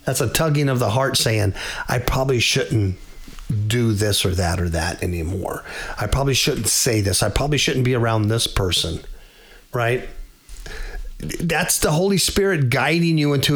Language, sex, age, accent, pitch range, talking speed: English, male, 50-69, American, 120-175 Hz, 165 wpm